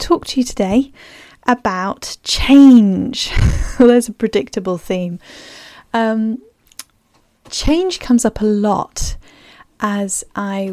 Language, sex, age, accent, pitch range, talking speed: English, female, 10-29, British, 205-245 Hz, 105 wpm